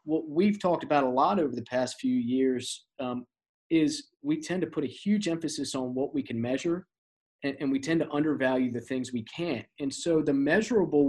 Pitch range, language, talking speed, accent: 125-165 Hz, English, 210 wpm, American